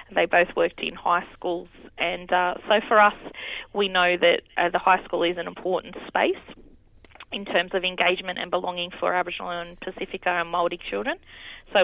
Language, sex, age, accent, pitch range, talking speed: English, female, 20-39, Australian, 170-190 Hz, 185 wpm